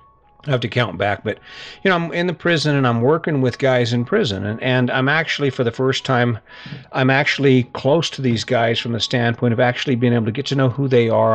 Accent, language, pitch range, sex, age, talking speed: American, English, 115-130 Hz, male, 50-69, 250 wpm